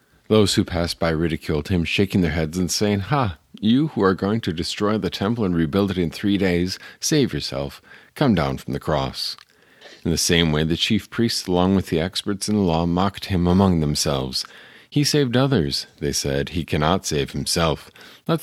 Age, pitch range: 50-69, 75-100 Hz